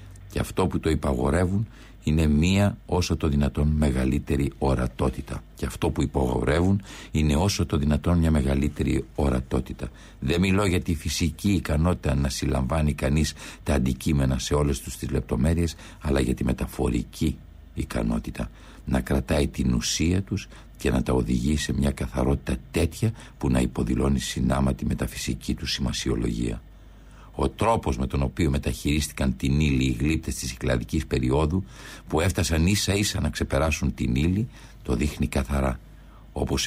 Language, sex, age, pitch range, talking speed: Greek, male, 60-79, 65-85 Hz, 145 wpm